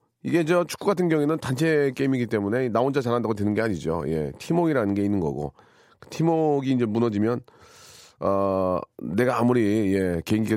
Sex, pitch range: male, 95-135 Hz